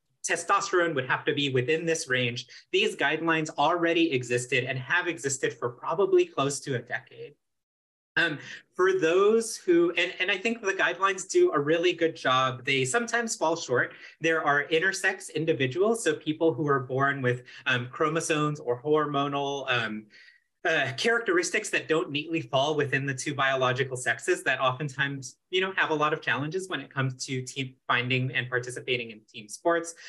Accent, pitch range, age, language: American, 130-175 Hz, 30-49, English